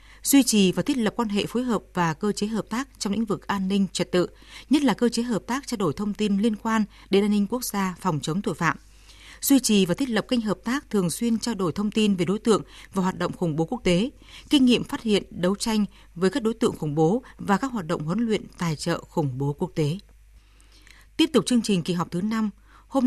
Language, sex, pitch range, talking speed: English, female, 175-230 Hz, 260 wpm